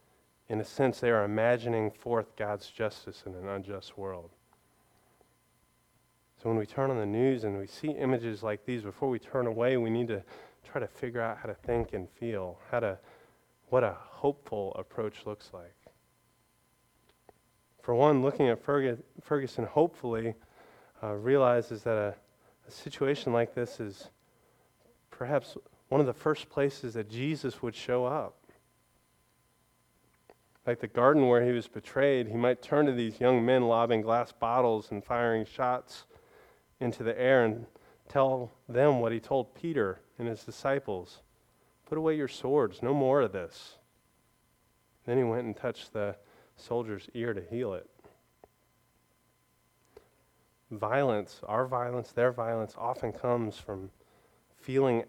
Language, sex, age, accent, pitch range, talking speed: English, male, 30-49, American, 110-130 Hz, 150 wpm